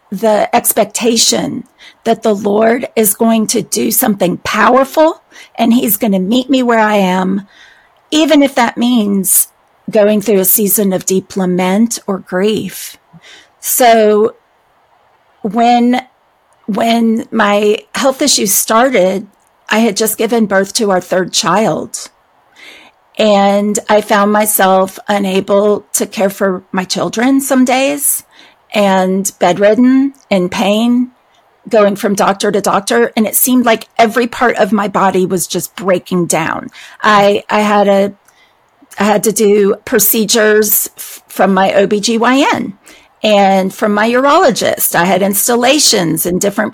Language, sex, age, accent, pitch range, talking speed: English, female, 40-59, American, 195-235 Hz, 135 wpm